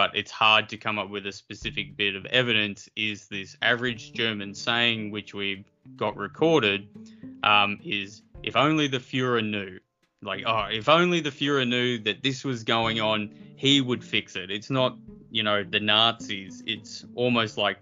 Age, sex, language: 20-39, male, English